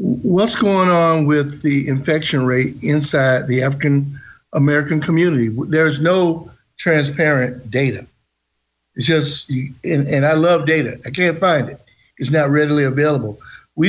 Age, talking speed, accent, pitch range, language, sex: 50-69, 140 wpm, American, 130-170 Hz, English, male